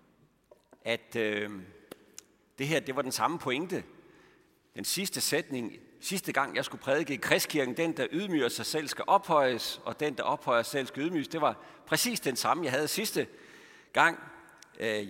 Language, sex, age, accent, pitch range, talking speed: Danish, male, 60-79, native, 110-155 Hz, 175 wpm